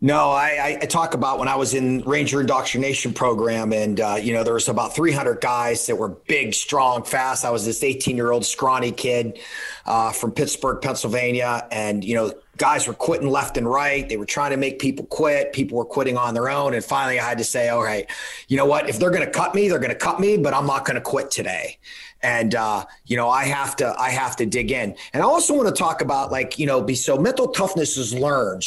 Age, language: 30-49, English